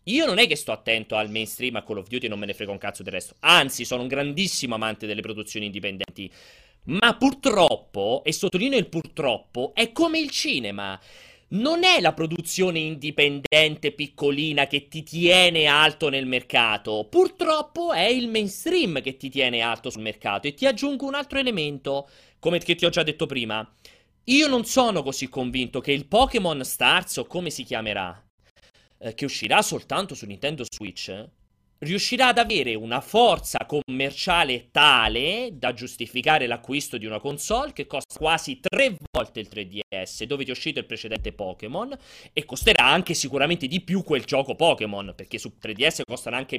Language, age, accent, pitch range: Italian, 30-49, native, 115-195 Hz